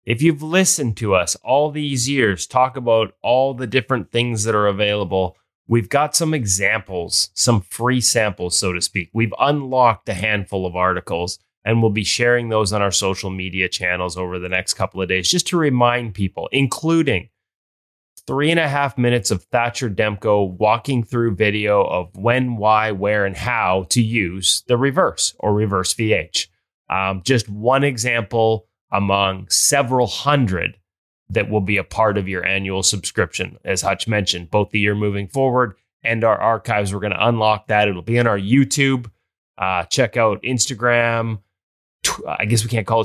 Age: 30-49